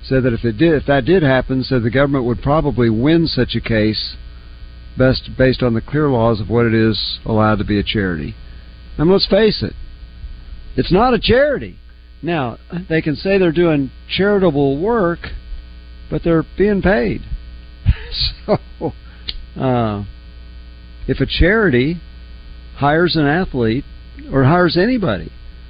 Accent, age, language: American, 50-69, English